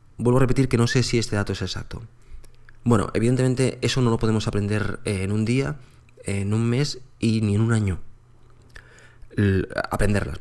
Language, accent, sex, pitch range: Spanish, Spanish, male, 110-125 Hz